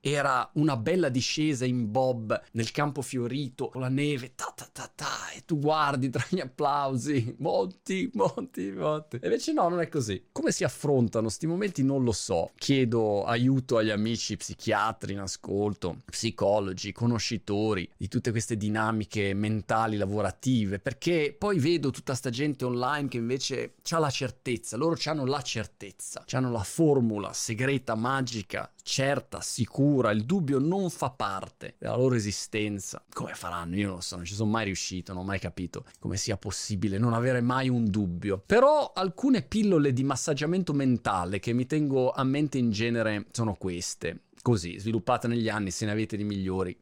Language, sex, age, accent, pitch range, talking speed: Italian, male, 30-49, native, 105-135 Hz, 170 wpm